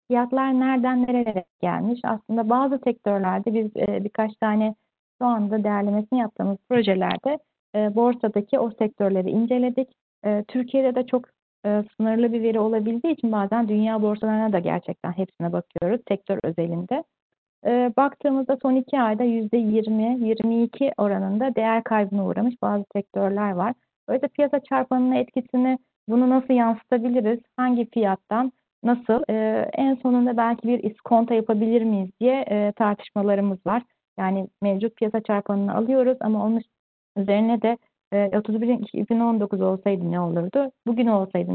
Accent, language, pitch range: native, Turkish, 210-250 Hz